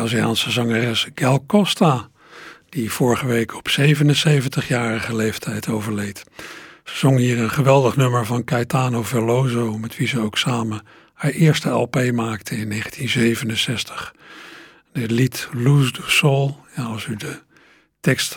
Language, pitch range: Dutch, 120-155 Hz